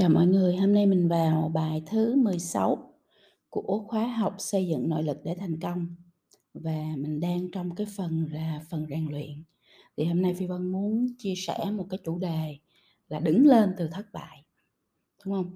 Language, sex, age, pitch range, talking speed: Vietnamese, female, 20-39, 165-220 Hz, 195 wpm